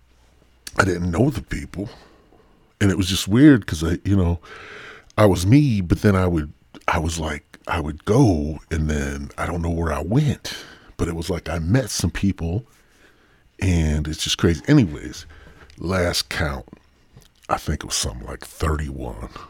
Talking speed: 175 wpm